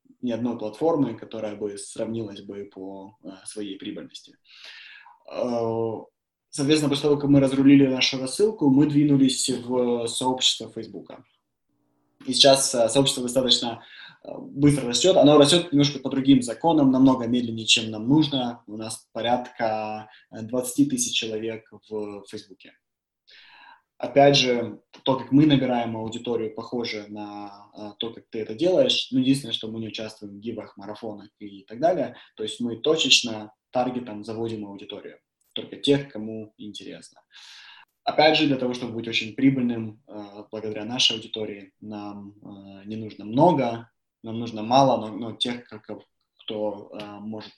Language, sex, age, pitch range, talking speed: Russian, male, 20-39, 105-135 Hz, 135 wpm